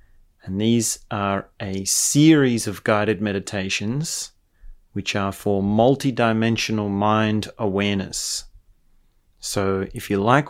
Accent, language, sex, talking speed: Australian, English, male, 105 wpm